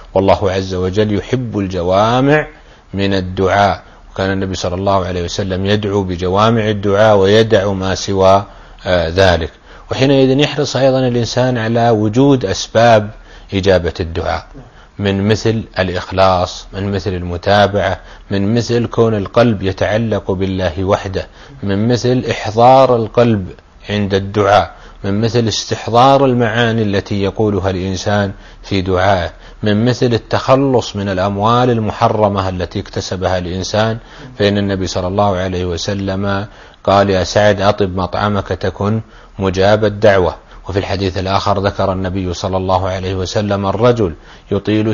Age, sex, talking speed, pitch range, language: 30-49, male, 120 wpm, 95-115 Hz, Arabic